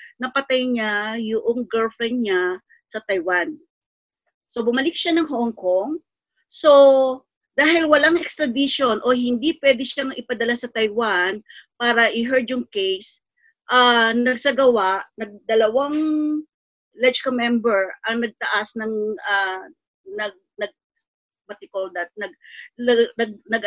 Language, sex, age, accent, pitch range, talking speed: English, female, 40-59, Filipino, 215-275 Hz, 110 wpm